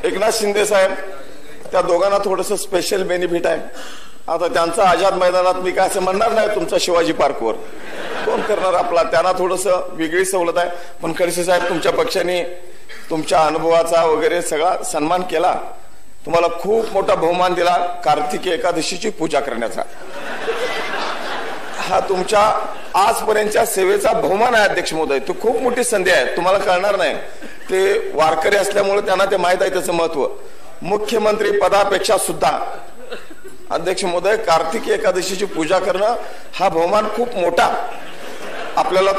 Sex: male